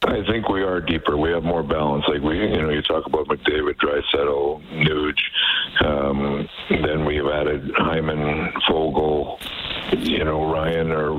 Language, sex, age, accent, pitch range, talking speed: English, male, 60-79, American, 75-80 Hz, 160 wpm